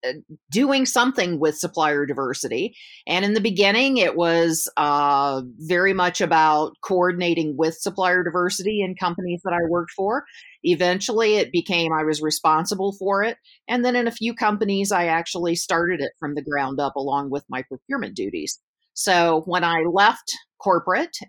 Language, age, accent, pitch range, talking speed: English, 40-59, American, 150-195 Hz, 160 wpm